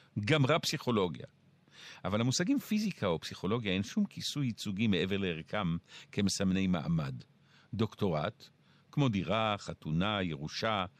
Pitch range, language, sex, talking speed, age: 95-150 Hz, Hebrew, male, 110 wpm, 50-69